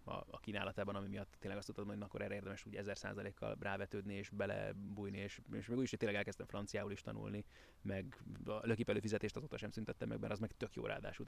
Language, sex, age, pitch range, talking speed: Hungarian, male, 30-49, 100-120 Hz, 225 wpm